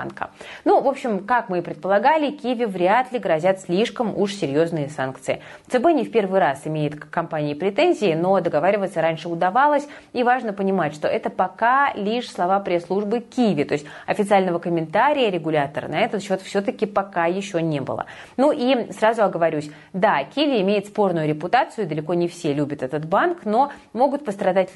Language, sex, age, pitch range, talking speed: Russian, female, 30-49, 165-225 Hz, 170 wpm